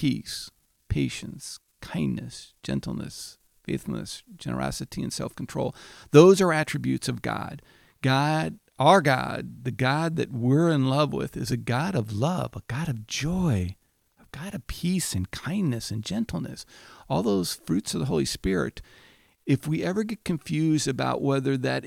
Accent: American